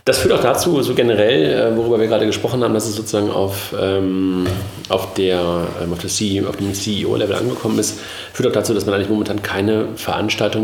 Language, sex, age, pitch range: German, male, 40-59, 95-115 Hz